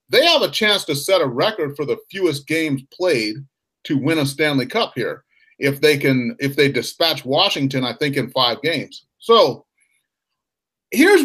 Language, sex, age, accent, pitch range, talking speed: English, male, 40-59, American, 150-220 Hz, 175 wpm